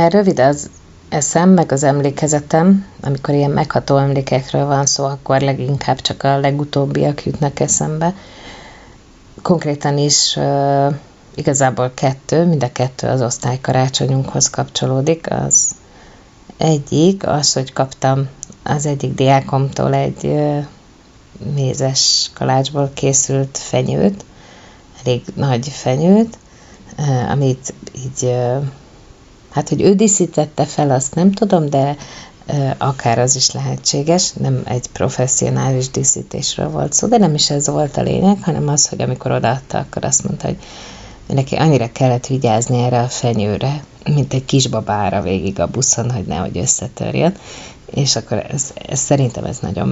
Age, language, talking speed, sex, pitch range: 30-49, Hungarian, 135 wpm, female, 125-145 Hz